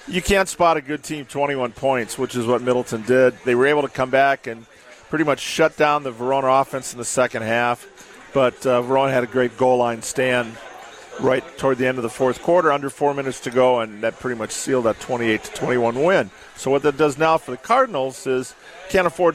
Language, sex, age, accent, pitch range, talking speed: English, male, 40-59, American, 125-150 Hz, 230 wpm